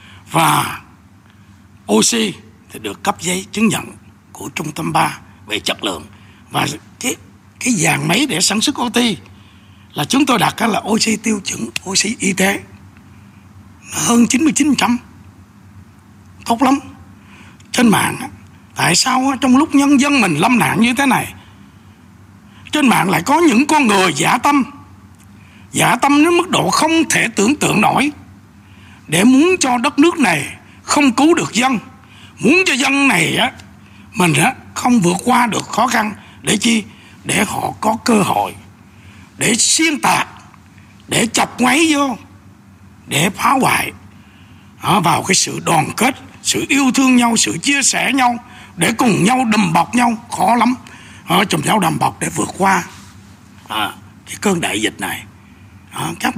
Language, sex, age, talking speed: Vietnamese, male, 60-79, 155 wpm